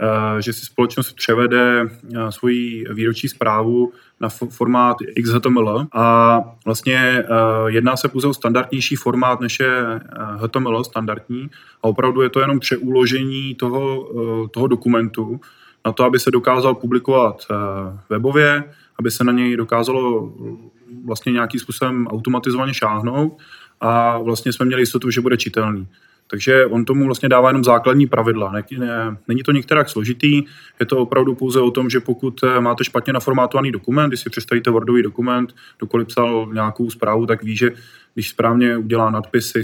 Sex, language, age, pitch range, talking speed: male, Czech, 20-39, 115-130 Hz, 145 wpm